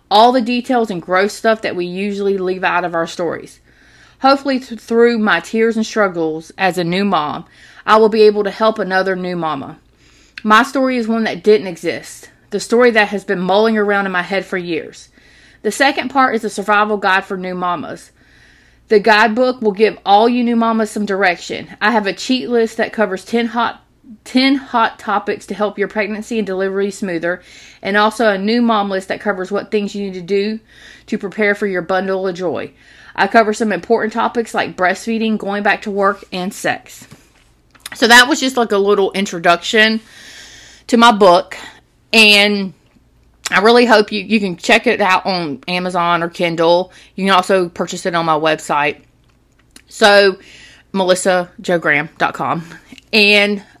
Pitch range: 185-220 Hz